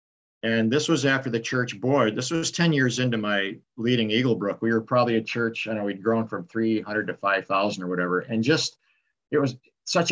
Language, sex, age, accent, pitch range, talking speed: English, male, 50-69, American, 115-150 Hz, 220 wpm